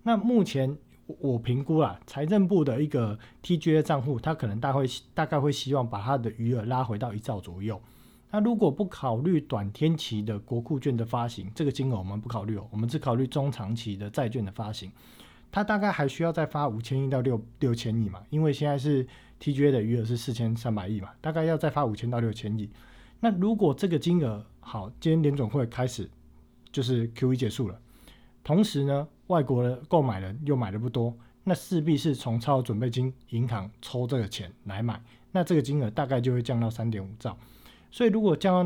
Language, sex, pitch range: Chinese, male, 115-150 Hz